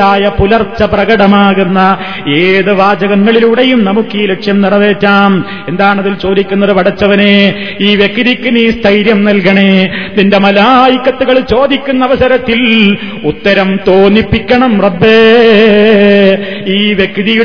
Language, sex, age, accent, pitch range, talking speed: Malayalam, male, 30-49, native, 200-250 Hz, 45 wpm